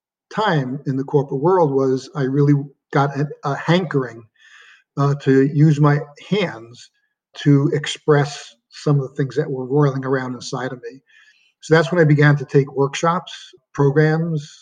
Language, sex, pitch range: English, male, 140-160 Hz